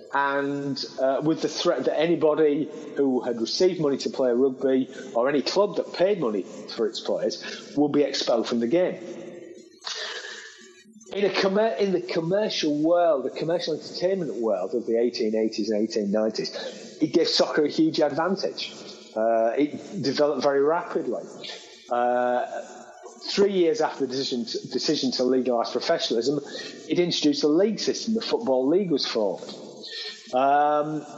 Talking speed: 145 wpm